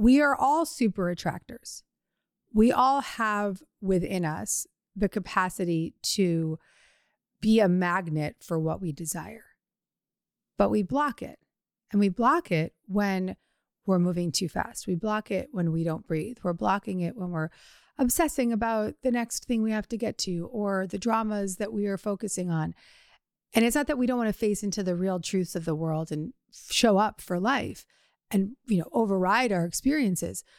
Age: 30-49